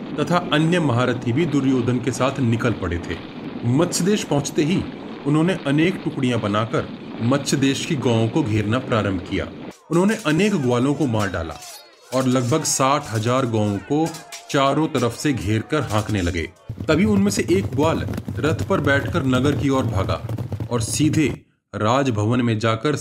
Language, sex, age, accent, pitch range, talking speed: Hindi, male, 30-49, native, 120-170 Hz, 160 wpm